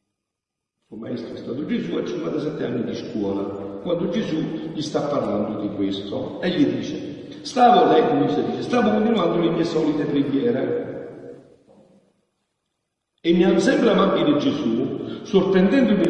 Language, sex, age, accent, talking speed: Italian, male, 60-79, native, 150 wpm